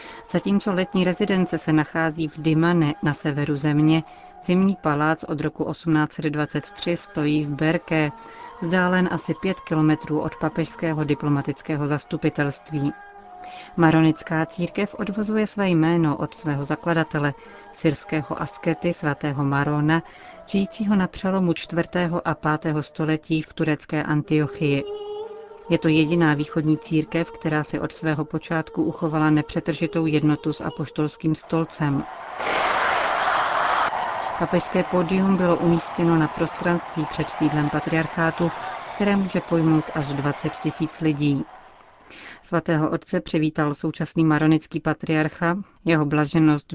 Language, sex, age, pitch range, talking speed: Czech, female, 40-59, 150-170 Hz, 115 wpm